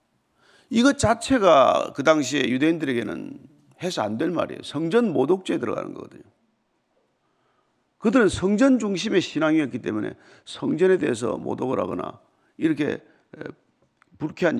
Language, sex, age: Korean, male, 50-69